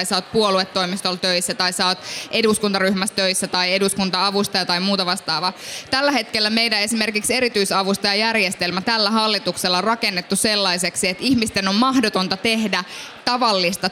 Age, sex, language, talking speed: 20-39, female, Finnish, 125 wpm